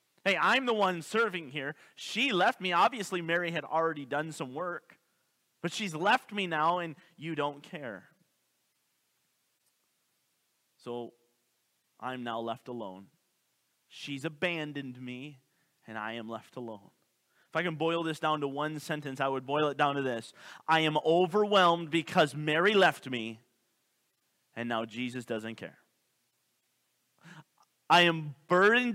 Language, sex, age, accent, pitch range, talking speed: English, male, 30-49, American, 125-190 Hz, 145 wpm